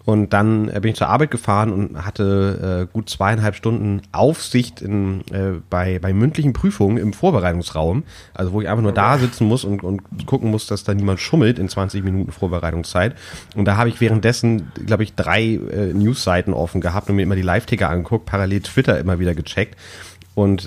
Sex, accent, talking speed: male, German, 195 wpm